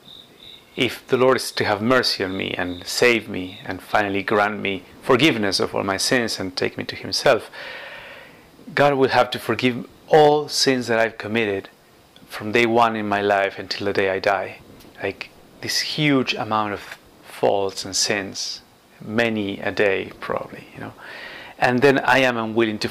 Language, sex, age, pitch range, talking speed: English, male, 30-49, 100-125 Hz, 175 wpm